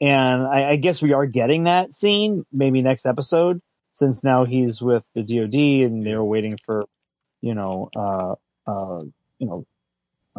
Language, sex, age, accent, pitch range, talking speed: English, male, 30-49, American, 110-135 Hz, 160 wpm